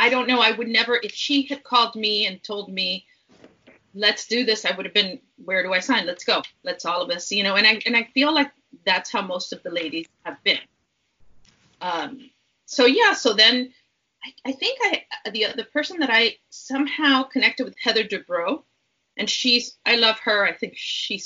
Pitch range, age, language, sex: 200-250 Hz, 30-49, English, female